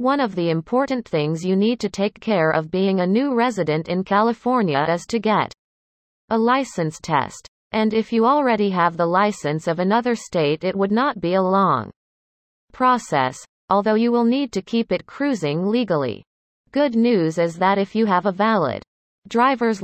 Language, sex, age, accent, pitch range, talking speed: English, female, 30-49, American, 175-230 Hz, 180 wpm